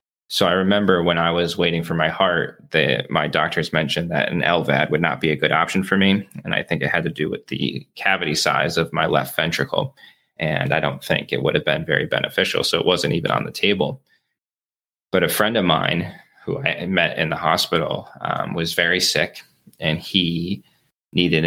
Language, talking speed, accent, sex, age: English, 205 wpm, American, male, 20-39